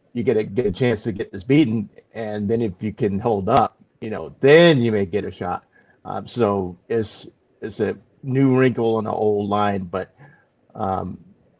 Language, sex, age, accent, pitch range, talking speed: English, male, 50-69, American, 100-115 Hz, 200 wpm